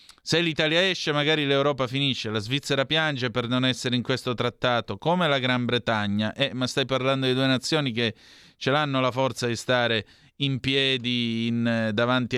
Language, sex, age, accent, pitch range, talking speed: Italian, male, 30-49, native, 115-140 Hz, 175 wpm